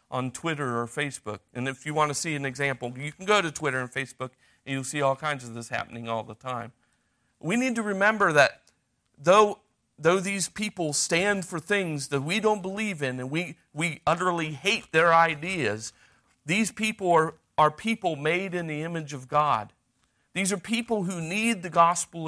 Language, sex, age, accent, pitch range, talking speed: English, male, 40-59, American, 135-185 Hz, 195 wpm